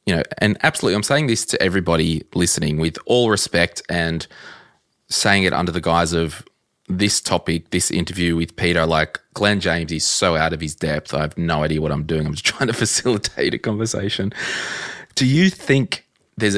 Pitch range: 85-105 Hz